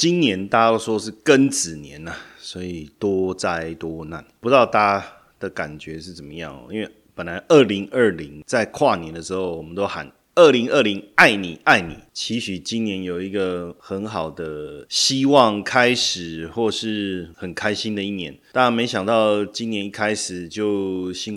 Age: 30-49